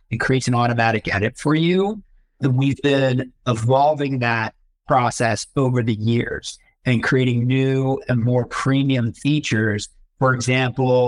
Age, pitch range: 50-69, 120-140 Hz